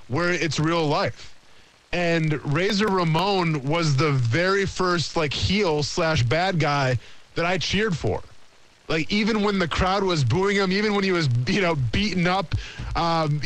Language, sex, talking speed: English, male, 165 wpm